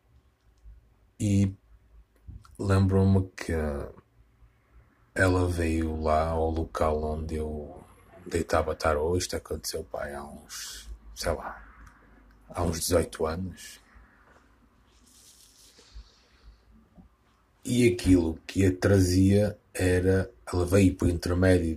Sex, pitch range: male, 80-95 Hz